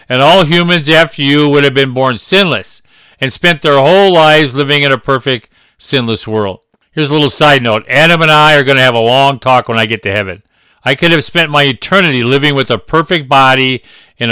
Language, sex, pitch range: English, male, 115-145 Hz